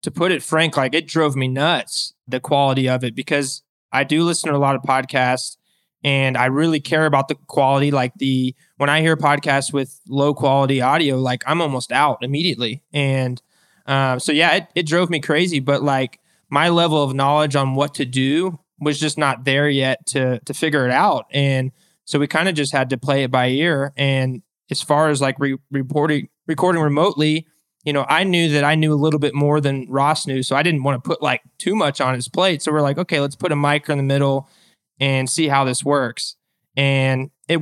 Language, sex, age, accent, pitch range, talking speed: English, male, 20-39, American, 135-155 Hz, 220 wpm